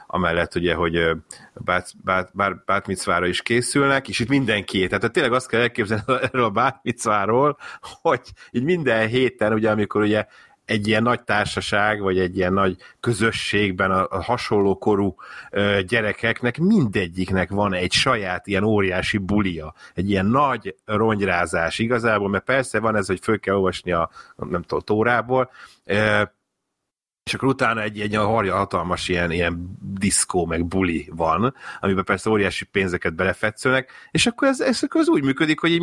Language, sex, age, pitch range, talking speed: Hungarian, male, 30-49, 95-120 Hz, 155 wpm